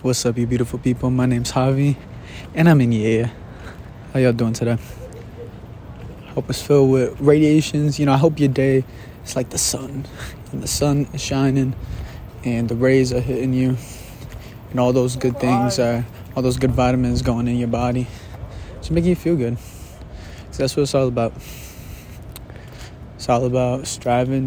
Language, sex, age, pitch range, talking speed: English, male, 20-39, 115-130 Hz, 180 wpm